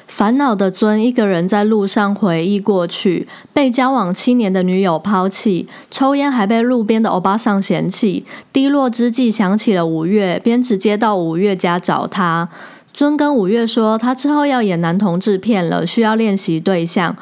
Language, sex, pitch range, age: Chinese, female, 190-245 Hz, 20-39